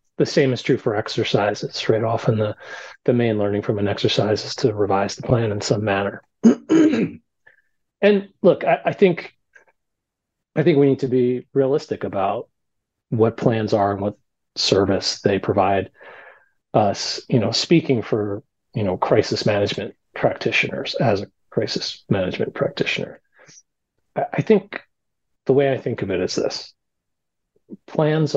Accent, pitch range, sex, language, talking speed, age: American, 100-135 Hz, male, English, 150 wpm, 30-49